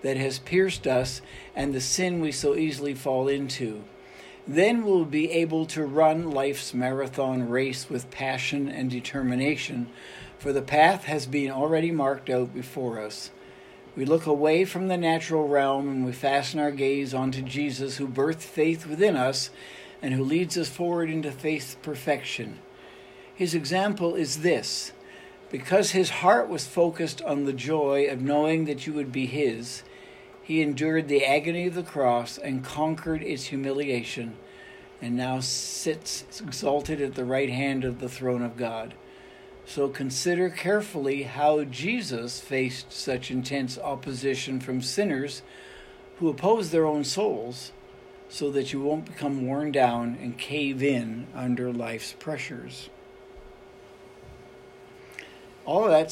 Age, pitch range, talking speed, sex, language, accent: 60-79, 130-155 Hz, 145 wpm, male, English, American